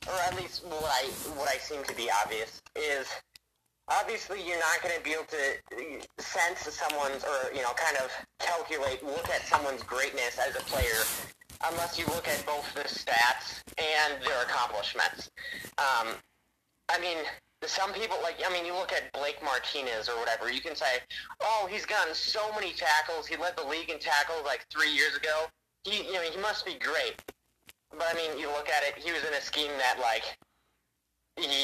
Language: English